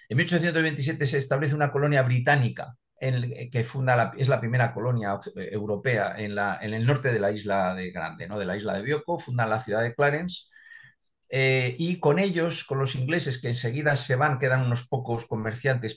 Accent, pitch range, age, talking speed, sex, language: Spanish, 110-140 Hz, 50-69, 195 wpm, male, English